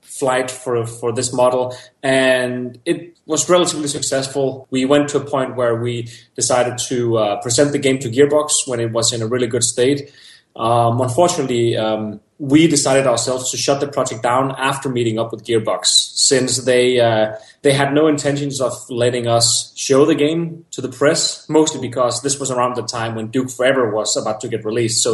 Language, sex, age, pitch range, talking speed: English, male, 20-39, 115-140 Hz, 195 wpm